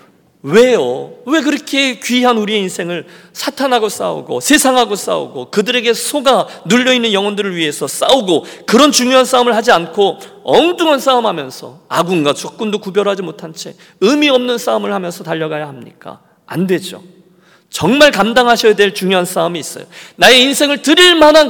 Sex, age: male, 40-59